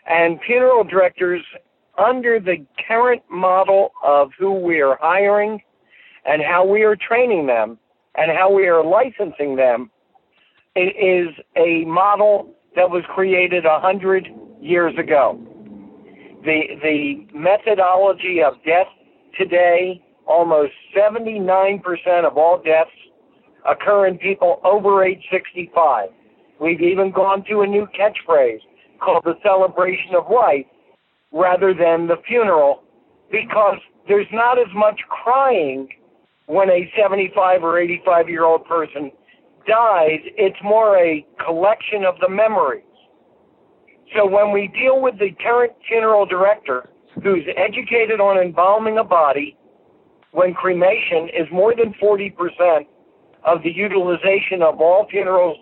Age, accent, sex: 60-79, American, male